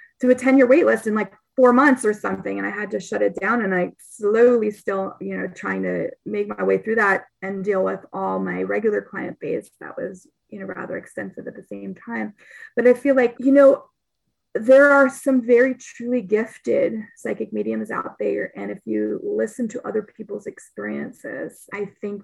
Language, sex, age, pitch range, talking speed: English, female, 20-39, 190-260 Hz, 200 wpm